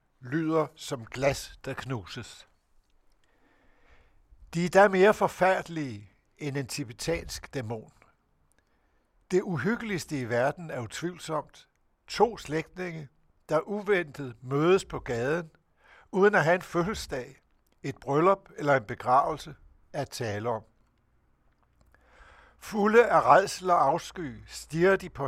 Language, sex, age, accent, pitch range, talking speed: Danish, male, 60-79, native, 120-170 Hz, 115 wpm